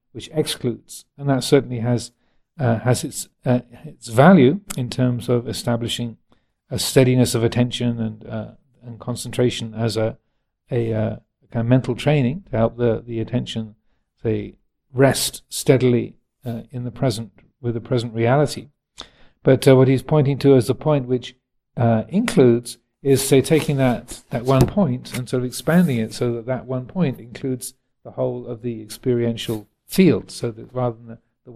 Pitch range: 115-135 Hz